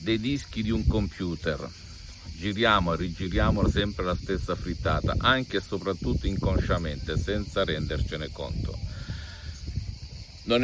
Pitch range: 85-95 Hz